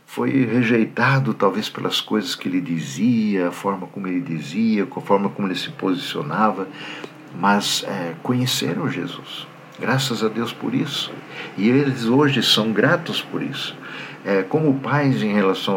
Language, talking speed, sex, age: Portuguese, 150 wpm, male, 60-79